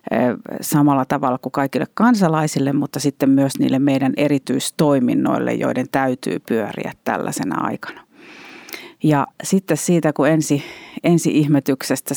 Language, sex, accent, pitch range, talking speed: Finnish, female, native, 140-175 Hz, 105 wpm